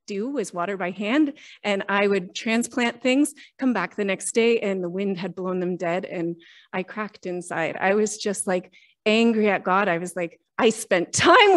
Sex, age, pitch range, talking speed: female, 30-49, 190-235 Hz, 195 wpm